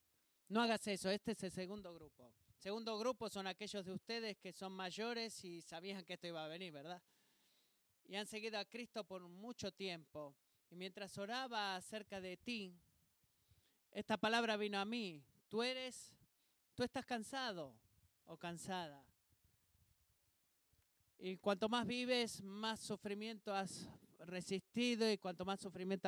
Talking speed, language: 145 wpm, Spanish